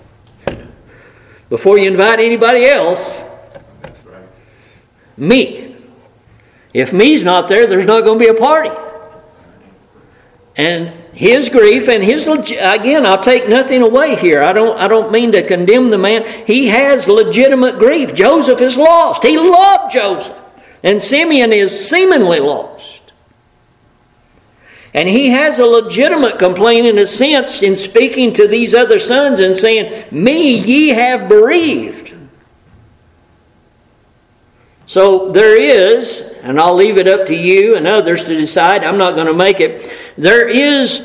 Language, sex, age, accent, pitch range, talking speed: English, male, 60-79, American, 165-265 Hz, 135 wpm